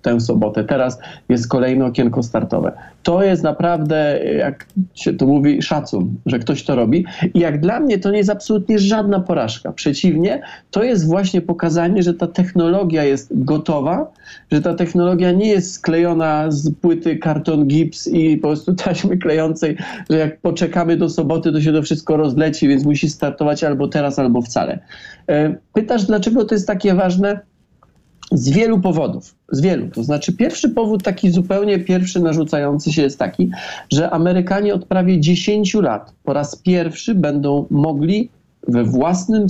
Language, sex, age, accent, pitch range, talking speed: Polish, male, 40-59, native, 140-185 Hz, 160 wpm